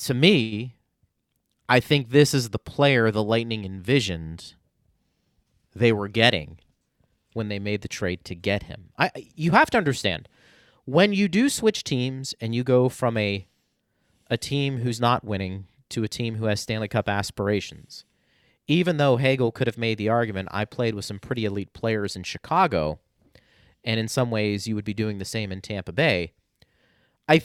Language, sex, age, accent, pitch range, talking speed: English, male, 30-49, American, 105-135 Hz, 175 wpm